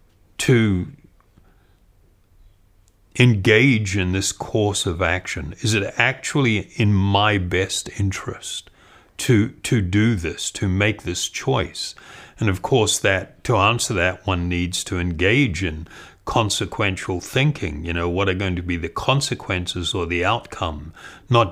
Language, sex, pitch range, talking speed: English, male, 90-115 Hz, 135 wpm